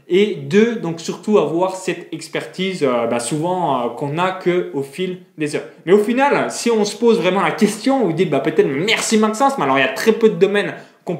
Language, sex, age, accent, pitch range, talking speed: French, male, 20-39, French, 160-220 Hz, 230 wpm